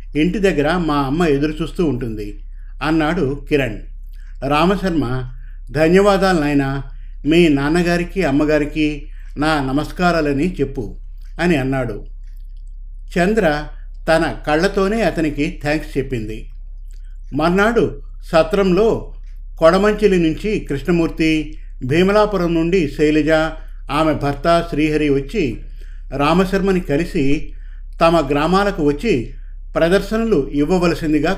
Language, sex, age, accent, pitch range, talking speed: Telugu, male, 50-69, native, 110-175 Hz, 80 wpm